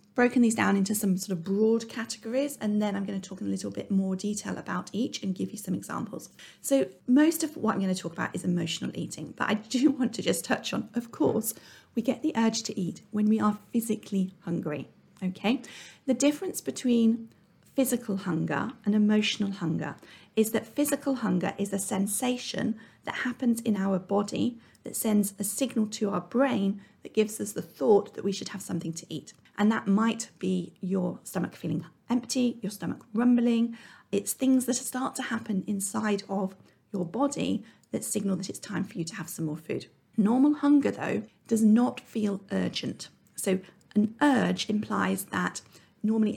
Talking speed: 190 wpm